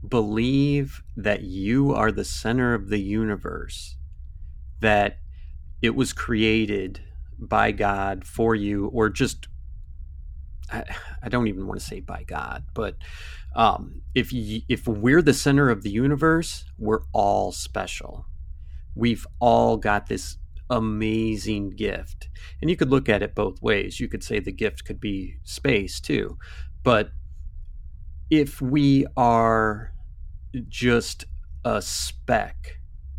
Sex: male